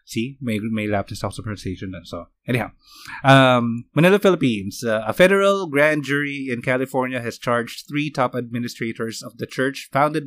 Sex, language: male, Filipino